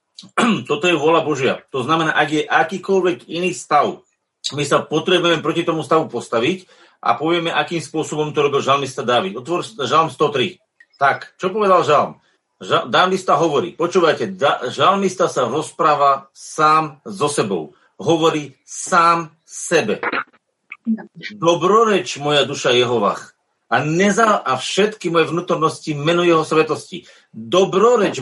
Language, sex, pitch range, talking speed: Slovak, male, 160-195 Hz, 125 wpm